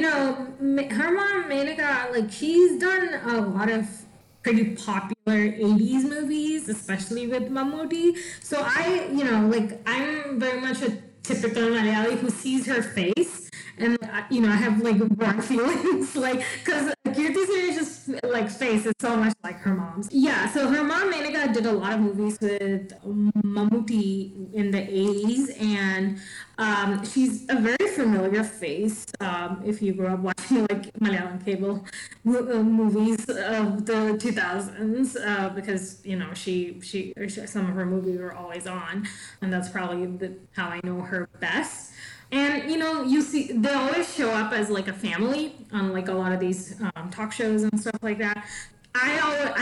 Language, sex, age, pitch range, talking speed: English, female, 20-39, 190-250 Hz, 170 wpm